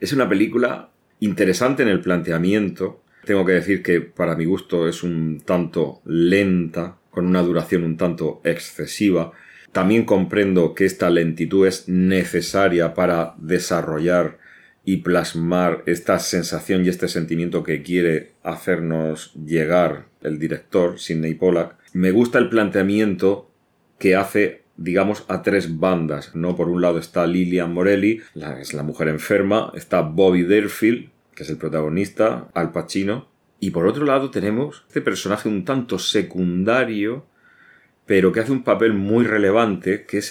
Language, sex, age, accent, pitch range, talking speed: Spanish, male, 40-59, Spanish, 85-100 Hz, 145 wpm